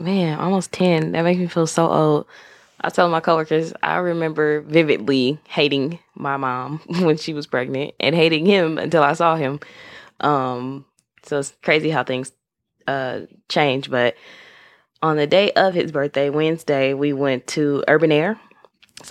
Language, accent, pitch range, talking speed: English, American, 140-165 Hz, 165 wpm